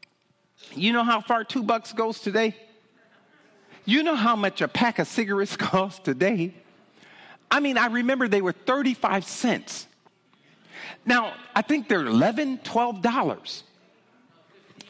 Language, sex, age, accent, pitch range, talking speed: English, male, 50-69, American, 200-260 Hz, 130 wpm